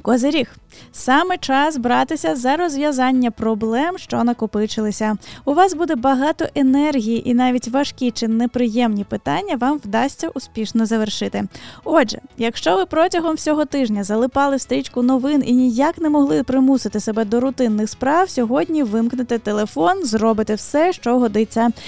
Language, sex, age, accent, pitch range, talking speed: Ukrainian, female, 10-29, native, 230-290 Hz, 135 wpm